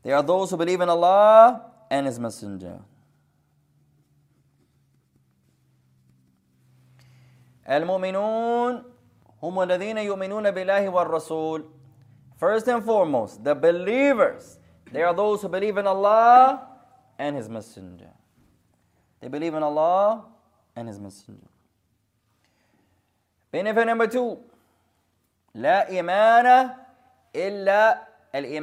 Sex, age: male, 30-49